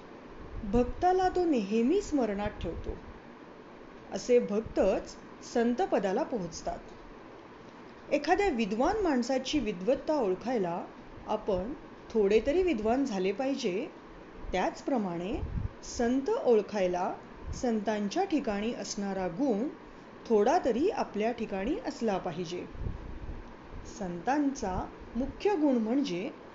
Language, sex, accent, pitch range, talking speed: Marathi, female, native, 195-295 Hz, 70 wpm